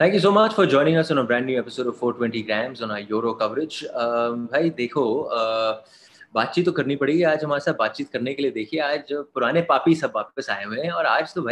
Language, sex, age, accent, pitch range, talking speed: English, male, 30-49, Indian, 125-175 Hz, 180 wpm